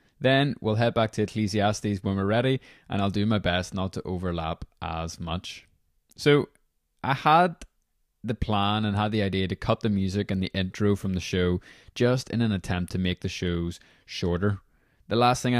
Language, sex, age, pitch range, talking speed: English, male, 20-39, 90-115 Hz, 190 wpm